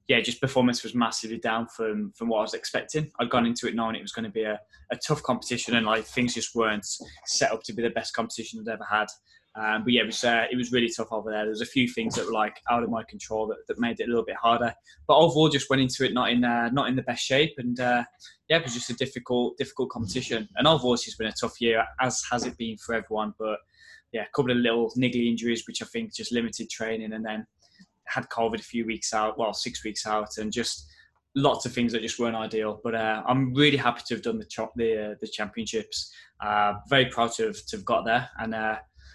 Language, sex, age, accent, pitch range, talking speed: English, male, 10-29, British, 110-125 Hz, 260 wpm